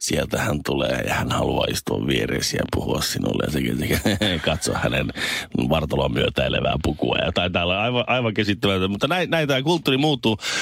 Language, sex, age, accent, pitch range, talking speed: Finnish, male, 30-49, native, 90-125 Hz, 160 wpm